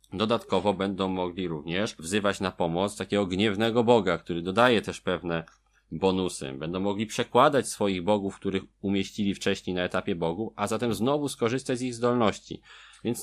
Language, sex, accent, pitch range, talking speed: Polish, male, native, 100-135 Hz, 155 wpm